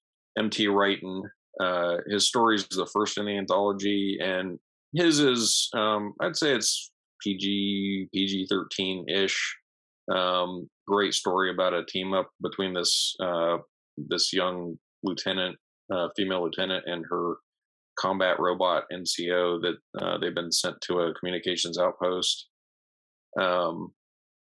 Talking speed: 130 wpm